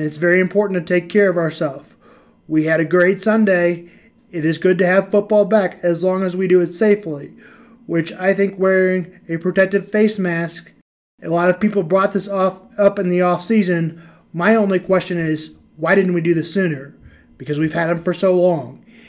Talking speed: 205 wpm